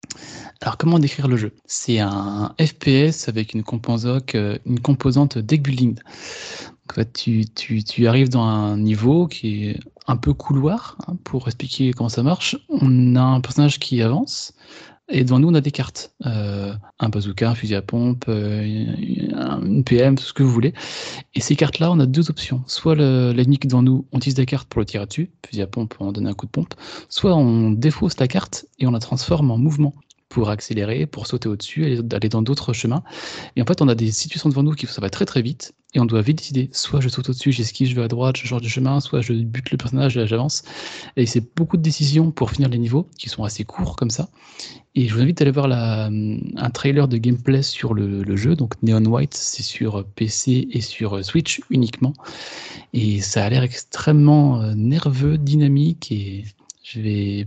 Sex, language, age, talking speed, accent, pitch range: male, French, 20-39, 210 wpm, French, 110-140 Hz